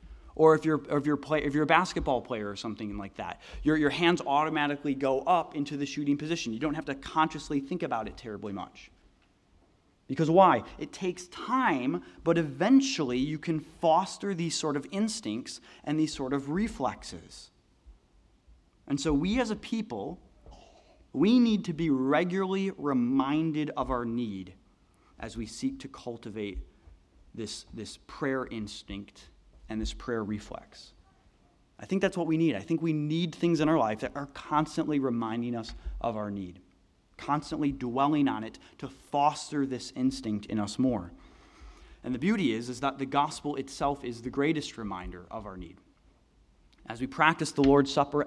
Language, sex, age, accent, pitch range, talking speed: English, male, 30-49, American, 110-155 Hz, 170 wpm